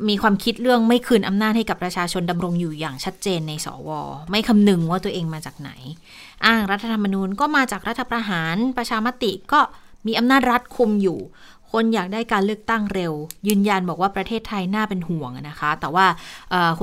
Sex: female